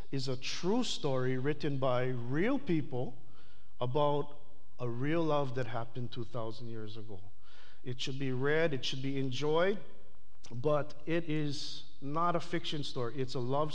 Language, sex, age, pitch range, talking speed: English, male, 50-69, 125-155 Hz, 155 wpm